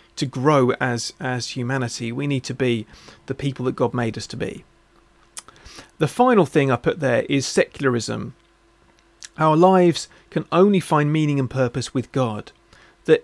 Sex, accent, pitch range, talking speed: male, British, 125-150 Hz, 165 wpm